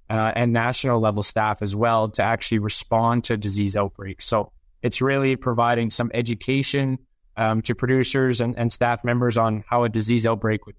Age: 20-39